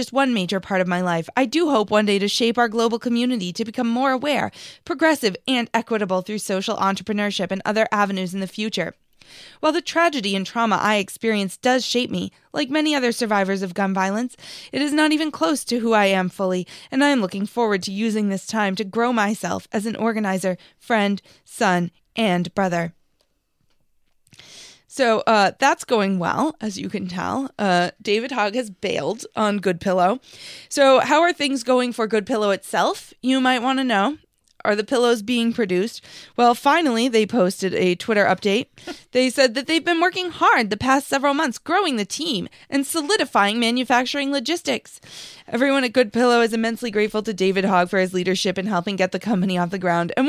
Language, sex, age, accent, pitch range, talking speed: English, female, 20-39, American, 195-260 Hz, 195 wpm